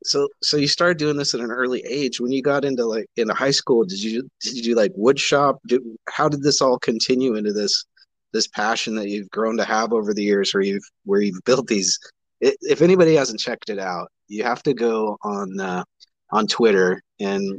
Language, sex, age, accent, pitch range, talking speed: English, male, 30-49, American, 105-135 Hz, 215 wpm